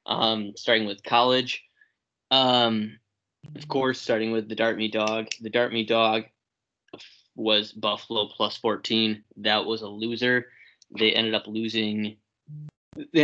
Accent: American